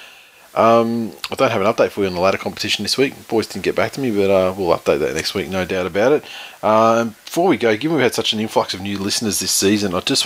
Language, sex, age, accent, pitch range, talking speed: English, male, 30-49, Australian, 95-110 Hz, 280 wpm